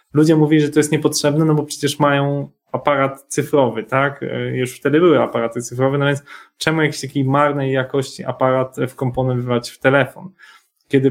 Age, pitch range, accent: 20-39, 125-145 Hz, native